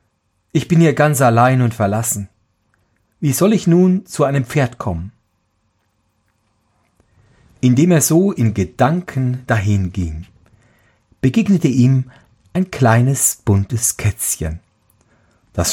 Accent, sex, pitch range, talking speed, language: German, male, 100-140 Hz, 105 wpm, German